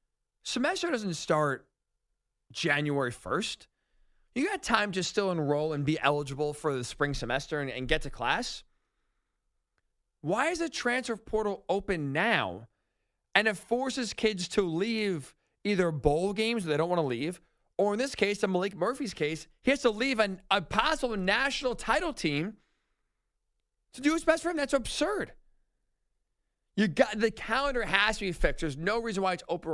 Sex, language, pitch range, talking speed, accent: male, English, 150-220 Hz, 170 wpm, American